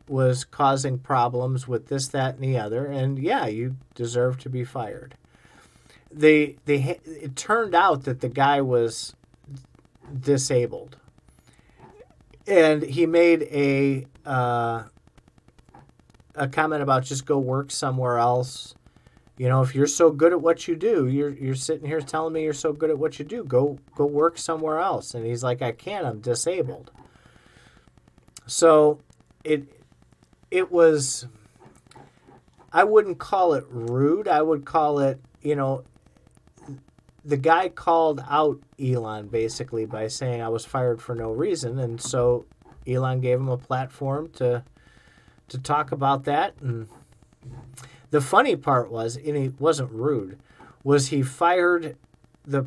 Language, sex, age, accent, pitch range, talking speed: English, male, 40-59, American, 125-150 Hz, 145 wpm